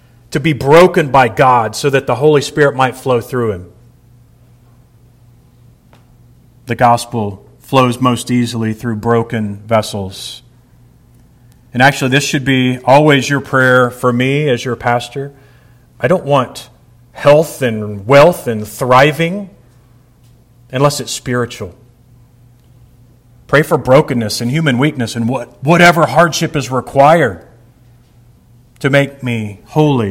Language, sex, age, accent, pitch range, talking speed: English, male, 40-59, American, 120-140 Hz, 120 wpm